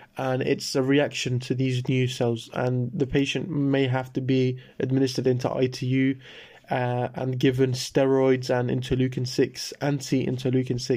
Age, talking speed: 20-39, 135 wpm